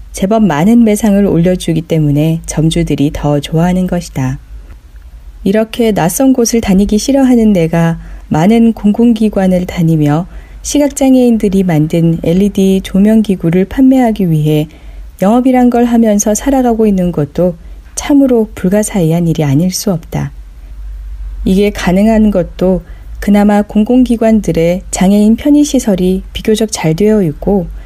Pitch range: 160-215 Hz